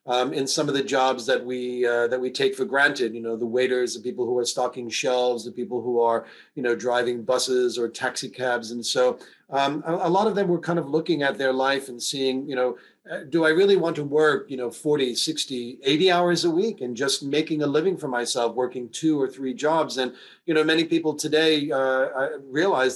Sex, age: male, 40-59